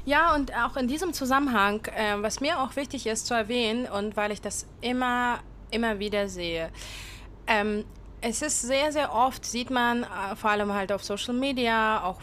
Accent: German